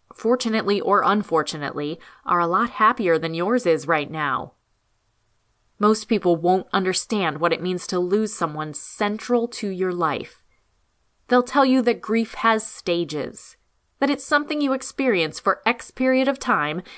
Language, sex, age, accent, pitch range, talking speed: English, female, 20-39, American, 165-230 Hz, 150 wpm